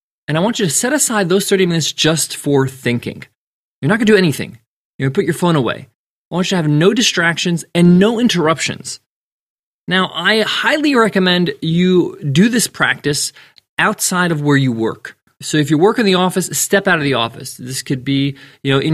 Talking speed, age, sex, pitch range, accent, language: 205 wpm, 20-39, male, 140-195 Hz, American, English